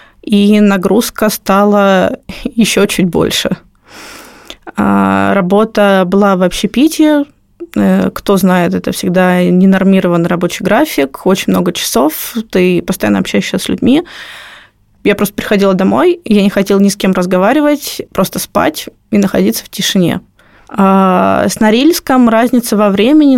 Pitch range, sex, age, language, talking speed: 185-225 Hz, female, 20-39, Russian, 120 wpm